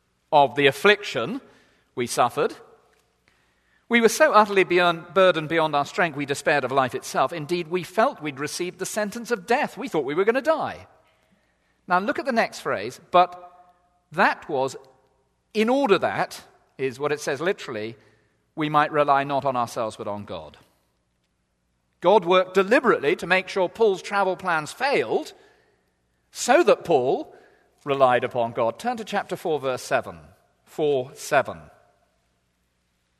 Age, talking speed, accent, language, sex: 40-59, 150 wpm, British, English, male